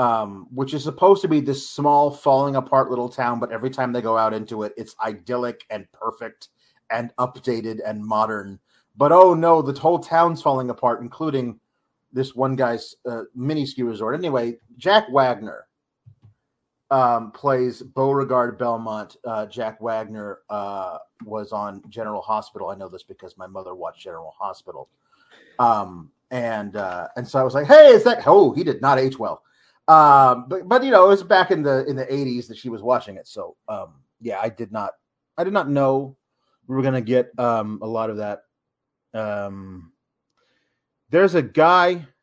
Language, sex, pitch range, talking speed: English, male, 115-150 Hz, 180 wpm